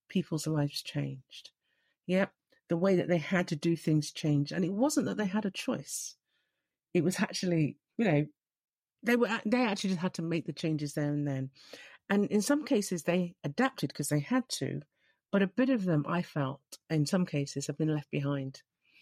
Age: 50-69